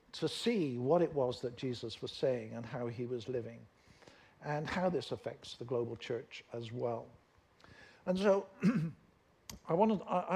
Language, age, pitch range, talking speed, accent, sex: English, 60-79, 130-180 Hz, 155 wpm, British, male